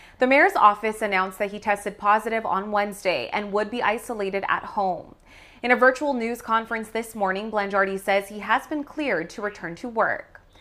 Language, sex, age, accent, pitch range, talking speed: English, female, 20-39, American, 205-245 Hz, 185 wpm